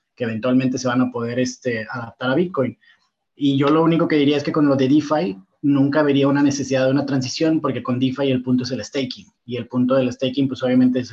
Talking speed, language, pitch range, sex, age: 245 wpm, Spanish, 125-140 Hz, male, 30-49